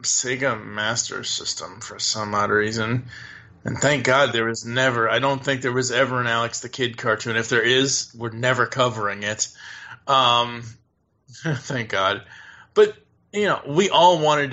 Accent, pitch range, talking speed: American, 115-145 Hz, 165 wpm